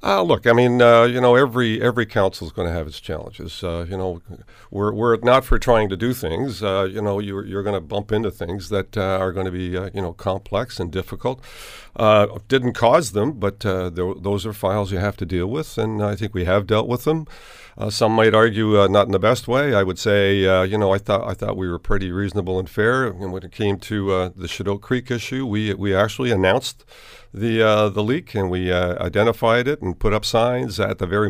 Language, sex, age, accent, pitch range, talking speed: English, male, 50-69, American, 95-115 Hz, 245 wpm